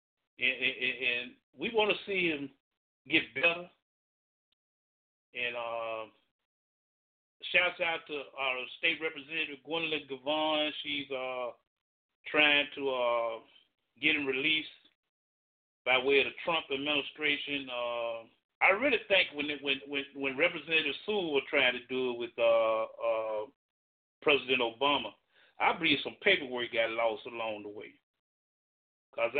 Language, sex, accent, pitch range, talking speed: English, male, American, 120-165 Hz, 135 wpm